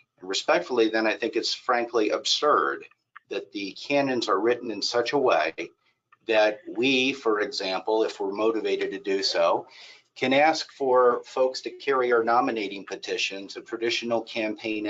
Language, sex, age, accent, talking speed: English, male, 50-69, American, 155 wpm